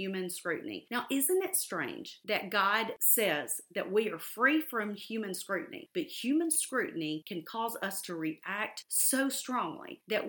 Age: 40-59